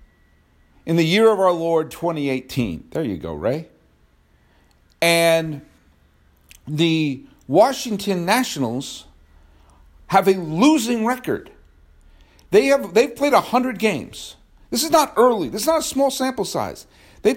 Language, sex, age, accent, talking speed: English, male, 50-69, American, 130 wpm